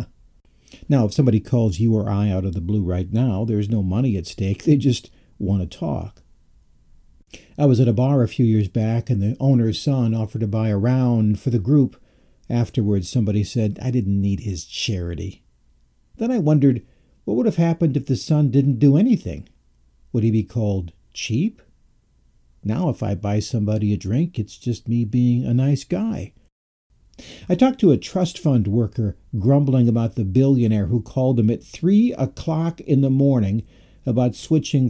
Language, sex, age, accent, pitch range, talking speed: English, male, 60-79, American, 105-140 Hz, 180 wpm